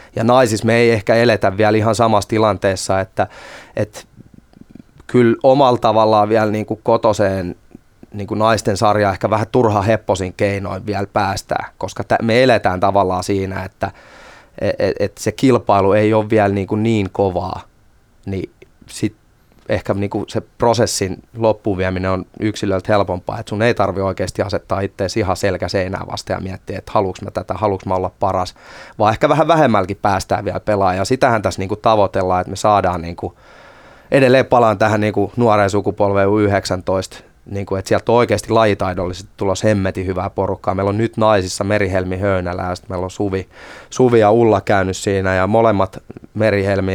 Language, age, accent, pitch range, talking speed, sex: Finnish, 20-39, native, 95-110 Hz, 160 wpm, male